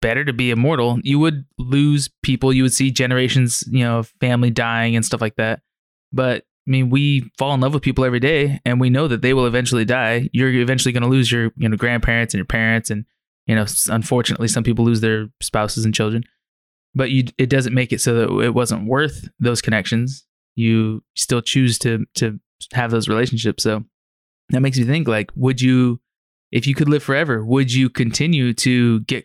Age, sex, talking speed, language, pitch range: 20-39, male, 205 wpm, English, 115-130 Hz